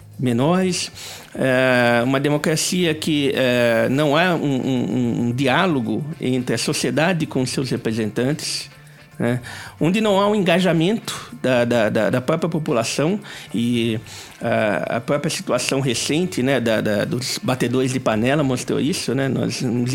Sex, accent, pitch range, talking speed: male, Brazilian, 125-180 Hz, 135 wpm